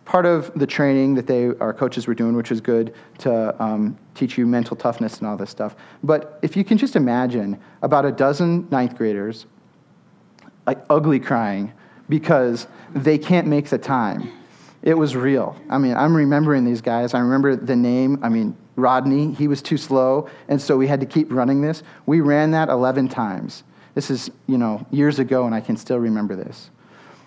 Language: English